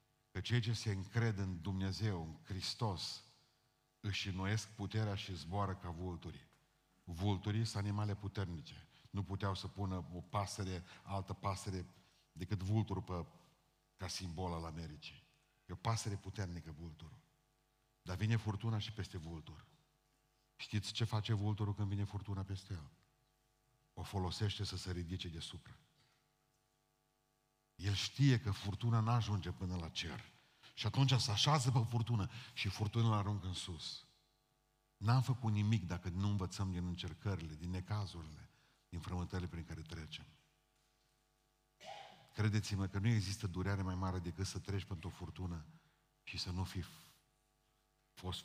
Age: 50-69